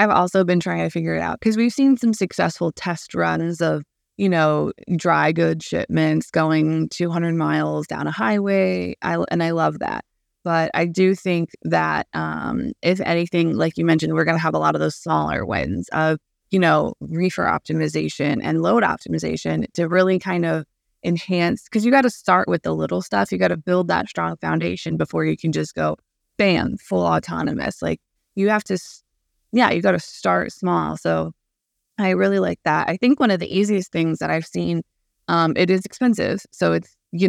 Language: English